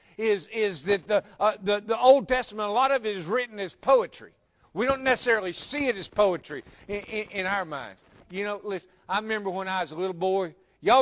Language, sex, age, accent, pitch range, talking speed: English, male, 60-79, American, 185-235 Hz, 225 wpm